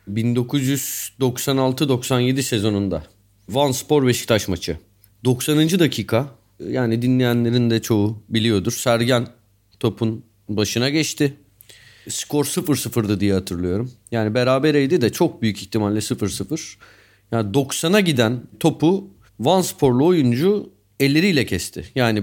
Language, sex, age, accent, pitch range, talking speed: Turkish, male, 40-59, native, 110-155 Hz, 105 wpm